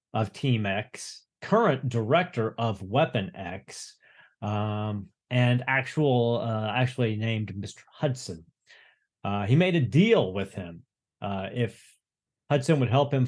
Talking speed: 130 wpm